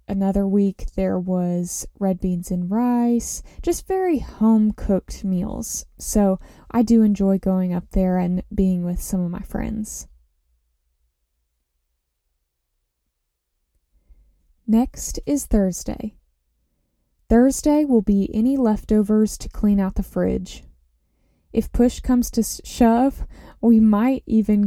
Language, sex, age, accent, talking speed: English, female, 20-39, American, 115 wpm